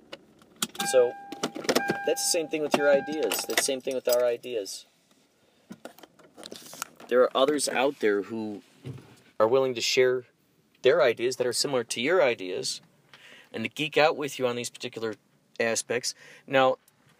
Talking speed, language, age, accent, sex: 155 wpm, English, 30-49, American, male